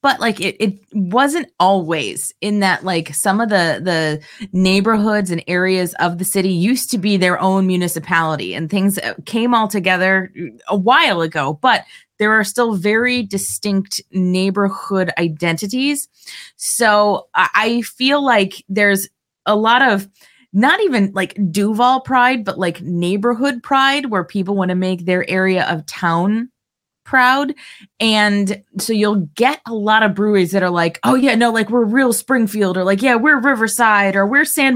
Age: 20-39